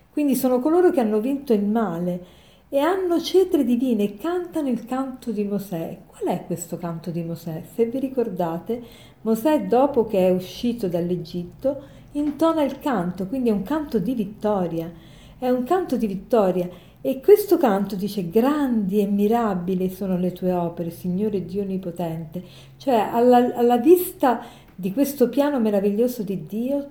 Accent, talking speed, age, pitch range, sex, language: native, 160 wpm, 50-69, 195-270 Hz, female, Italian